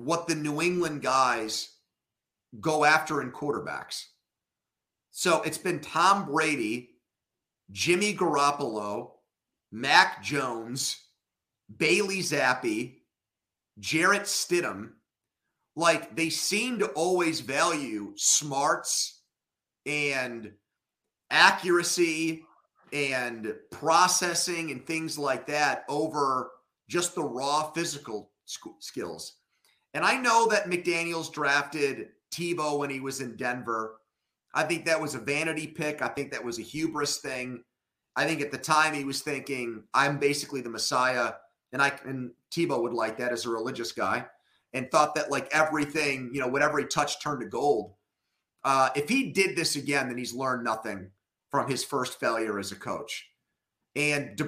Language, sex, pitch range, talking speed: English, male, 125-160 Hz, 135 wpm